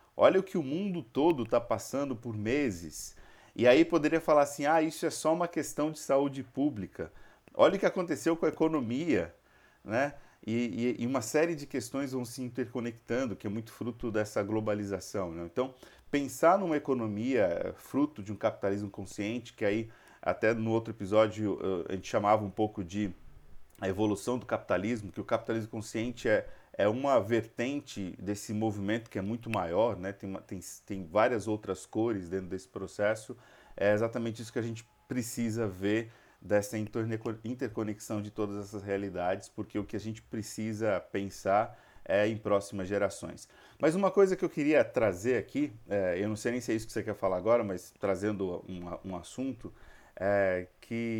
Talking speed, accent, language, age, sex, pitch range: 175 wpm, Brazilian, Portuguese, 40-59, male, 100-125 Hz